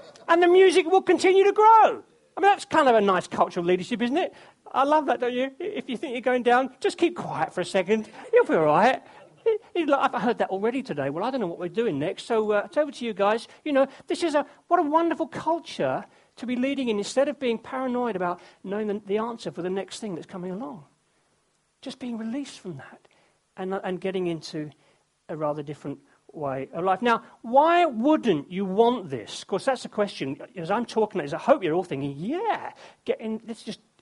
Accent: British